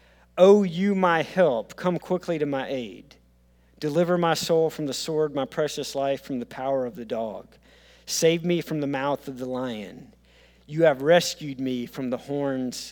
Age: 40-59